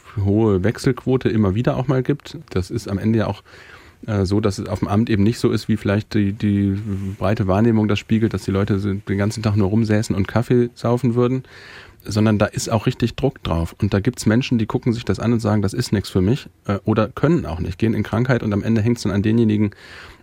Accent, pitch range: German, 95-115 Hz